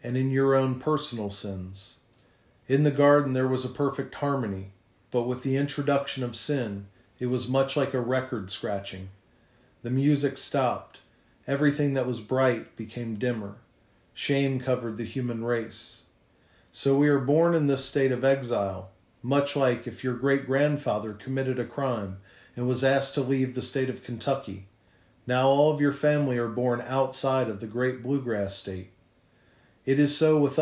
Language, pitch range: English, 115-140 Hz